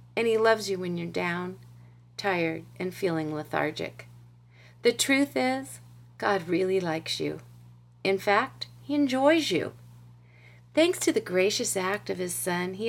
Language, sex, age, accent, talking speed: English, female, 40-59, American, 150 wpm